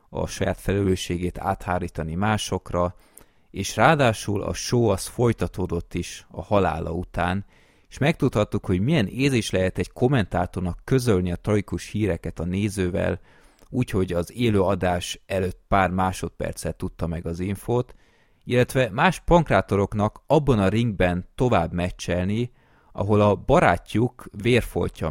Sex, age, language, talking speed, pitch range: male, 30-49, Hungarian, 125 wpm, 90-110 Hz